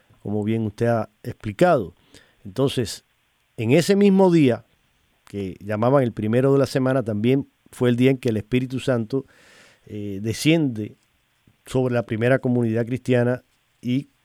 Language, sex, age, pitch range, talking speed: Spanish, male, 40-59, 110-130 Hz, 145 wpm